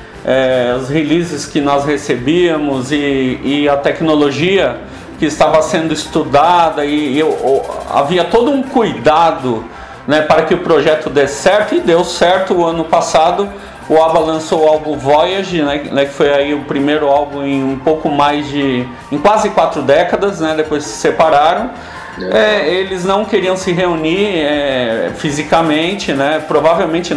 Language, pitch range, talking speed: Portuguese, 145-185 Hz, 155 wpm